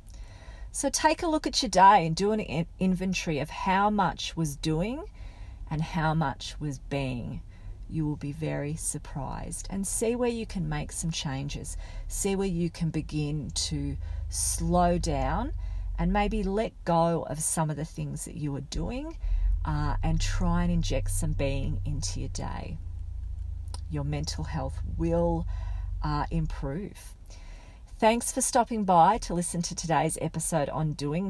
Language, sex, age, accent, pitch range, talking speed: English, female, 40-59, Australian, 110-180 Hz, 155 wpm